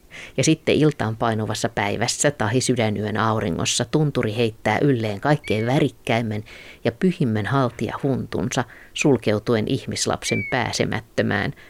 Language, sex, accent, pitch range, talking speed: Finnish, female, native, 110-140 Hz, 105 wpm